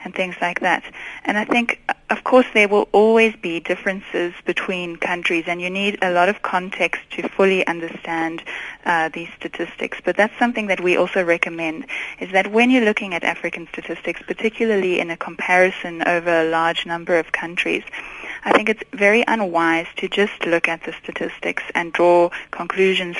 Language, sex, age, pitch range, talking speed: Dutch, female, 20-39, 170-205 Hz, 175 wpm